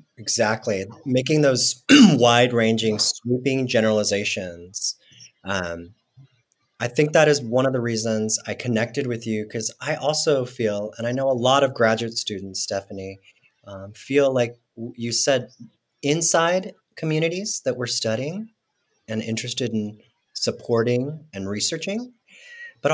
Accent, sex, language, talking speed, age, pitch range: American, male, English, 130 wpm, 30-49, 110-135 Hz